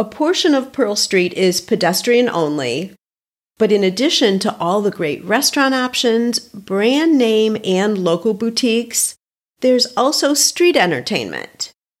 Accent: American